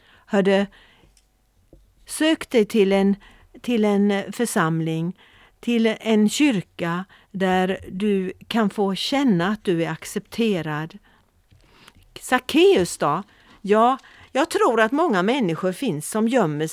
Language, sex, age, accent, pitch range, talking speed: Swedish, female, 50-69, native, 180-230 Hz, 110 wpm